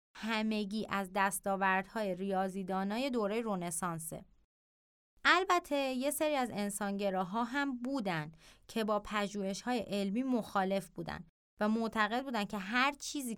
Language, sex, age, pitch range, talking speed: Persian, female, 20-39, 190-235 Hz, 110 wpm